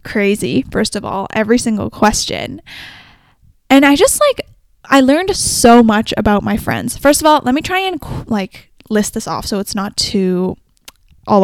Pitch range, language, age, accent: 205-265 Hz, English, 10-29, American